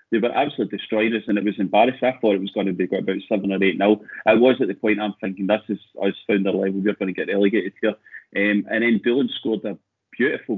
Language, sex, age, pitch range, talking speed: English, male, 30-49, 105-120 Hz, 260 wpm